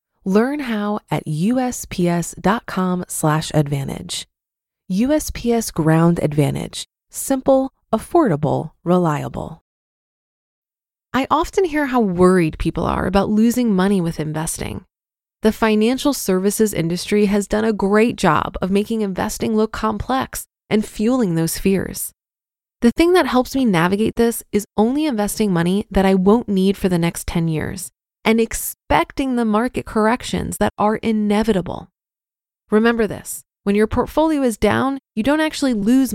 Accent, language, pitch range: American, English, 185-235 Hz